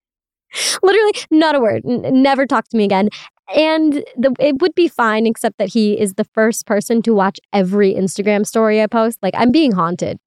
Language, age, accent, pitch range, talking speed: English, 20-39, American, 185-265 Hz, 200 wpm